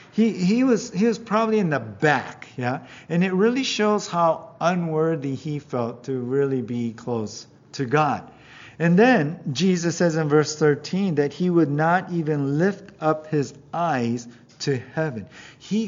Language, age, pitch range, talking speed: English, 50-69, 130-170 Hz, 165 wpm